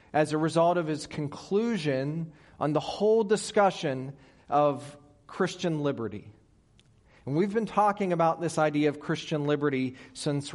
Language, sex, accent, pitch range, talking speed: English, male, American, 130-170 Hz, 135 wpm